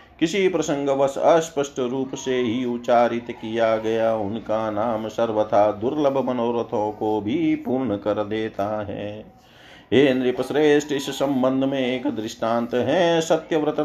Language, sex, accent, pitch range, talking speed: Hindi, male, native, 115-140 Hz, 120 wpm